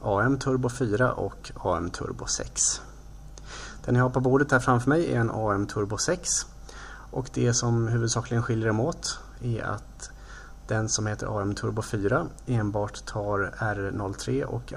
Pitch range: 105-130 Hz